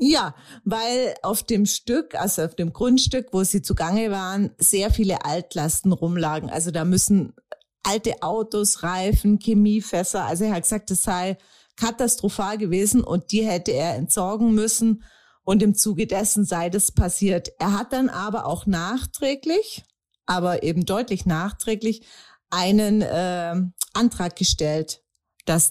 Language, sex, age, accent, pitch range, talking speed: German, female, 40-59, German, 170-215 Hz, 140 wpm